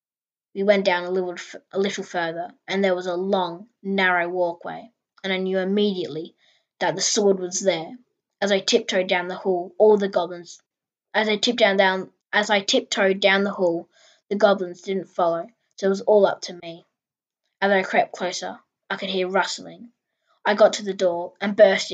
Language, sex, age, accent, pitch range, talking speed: English, female, 20-39, Australian, 180-210 Hz, 185 wpm